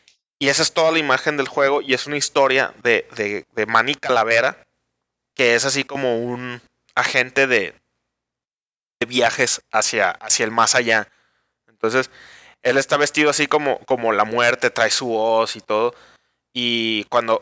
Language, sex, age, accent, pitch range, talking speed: Spanish, male, 20-39, Mexican, 115-150 Hz, 160 wpm